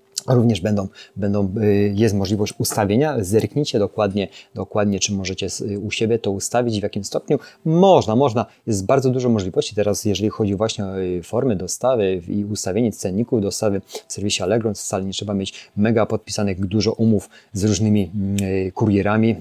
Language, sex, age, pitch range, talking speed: Polish, male, 30-49, 100-120 Hz, 150 wpm